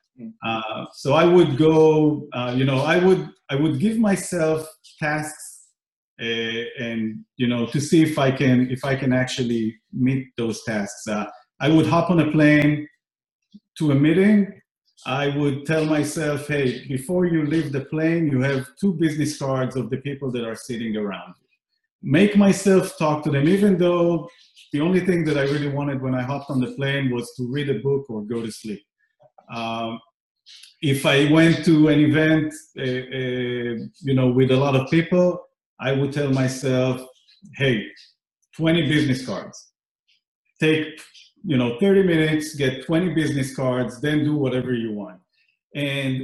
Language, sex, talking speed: English, male, 170 wpm